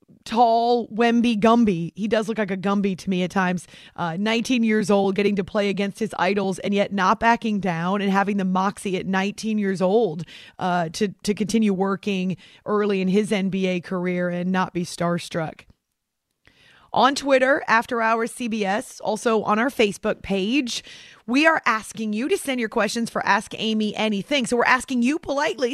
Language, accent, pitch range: English, American, 195-235 Hz